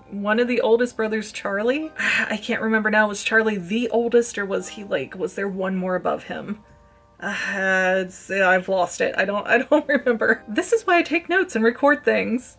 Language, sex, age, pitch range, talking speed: English, female, 20-39, 190-225 Hz, 210 wpm